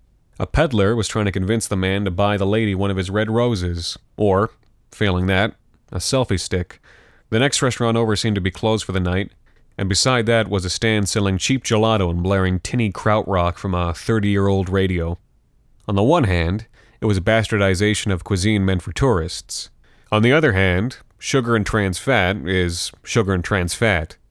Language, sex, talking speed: English, male, 195 wpm